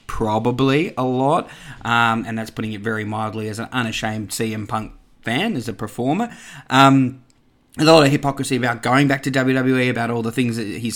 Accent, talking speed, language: Australian, 190 wpm, English